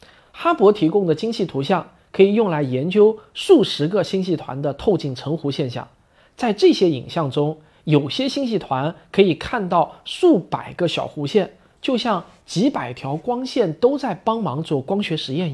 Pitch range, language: 145-225 Hz, Chinese